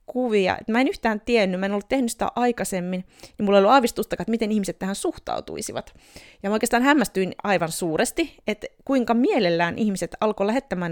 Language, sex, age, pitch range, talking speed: Finnish, female, 30-49, 190-245 Hz, 175 wpm